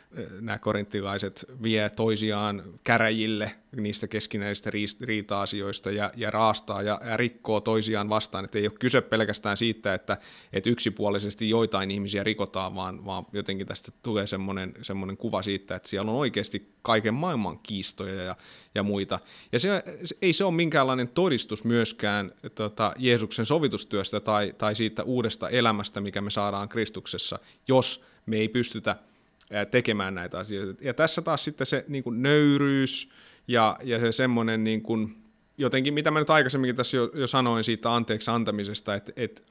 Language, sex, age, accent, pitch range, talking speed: Finnish, male, 30-49, native, 105-125 Hz, 145 wpm